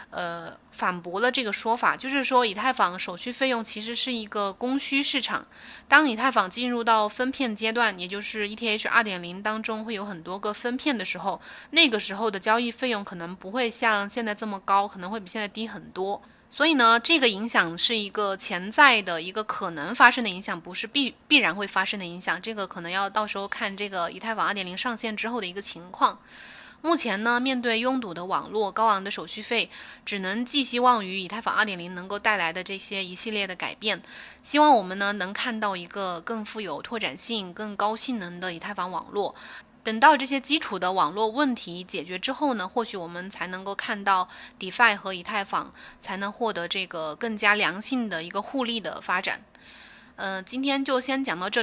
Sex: female